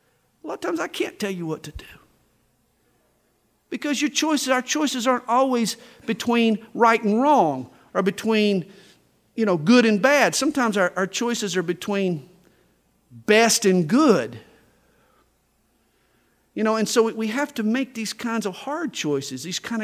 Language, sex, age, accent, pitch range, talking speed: English, male, 50-69, American, 140-225 Hz, 160 wpm